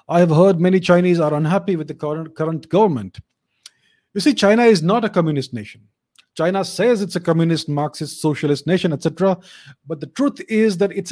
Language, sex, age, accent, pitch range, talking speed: English, male, 30-49, Indian, 155-195 Hz, 190 wpm